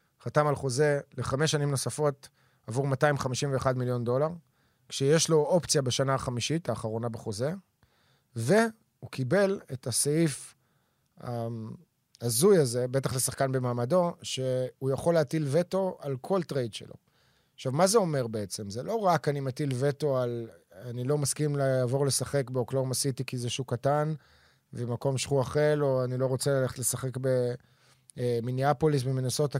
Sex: male